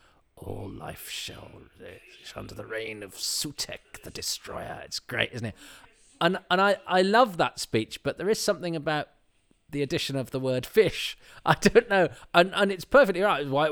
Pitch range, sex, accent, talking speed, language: 95-140 Hz, male, British, 190 wpm, English